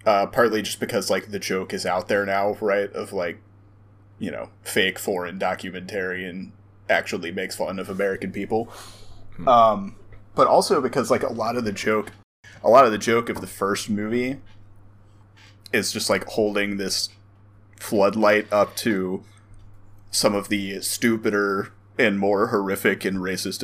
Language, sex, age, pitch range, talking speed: English, male, 20-39, 95-105 Hz, 155 wpm